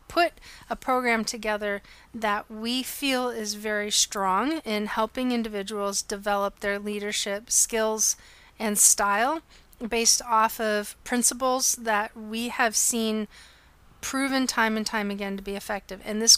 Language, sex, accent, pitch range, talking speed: English, female, American, 210-240 Hz, 135 wpm